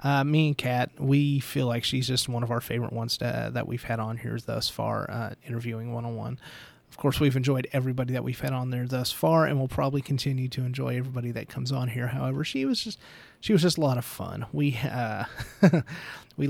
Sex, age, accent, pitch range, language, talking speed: male, 30-49, American, 125-155 Hz, English, 235 wpm